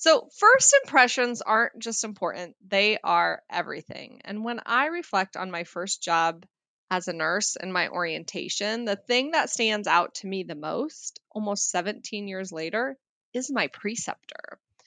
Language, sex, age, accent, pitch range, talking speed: English, female, 20-39, American, 175-235 Hz, 155 wpm